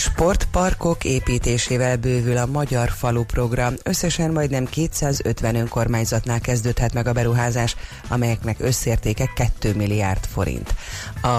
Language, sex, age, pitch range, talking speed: Hungarian, female, 30-49, 110-130 Hz, 110 wpm